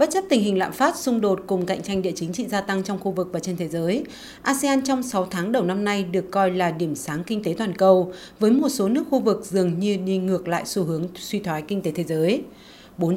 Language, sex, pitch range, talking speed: Vietnamese, female, 180-230 Hz, 270 wpm